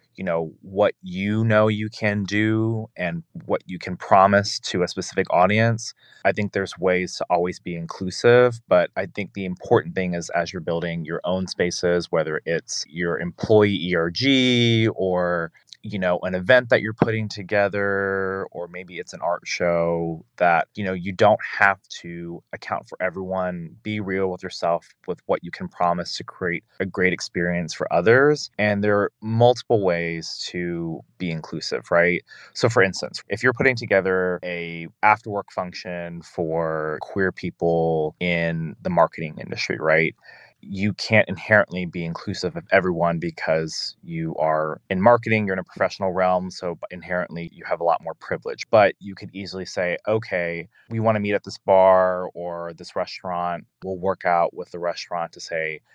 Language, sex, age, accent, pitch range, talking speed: English, male, 20-39, American, 85-100 Hz, 175 wpm